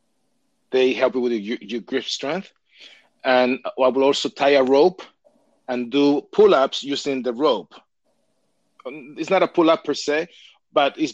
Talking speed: 155 wpm